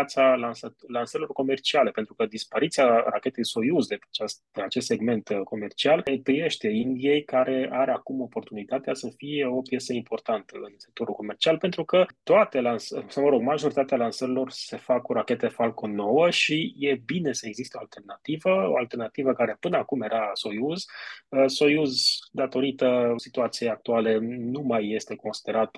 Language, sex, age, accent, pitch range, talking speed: Romanian, male, 20-39, native, 110-135 Hz, 150 wpm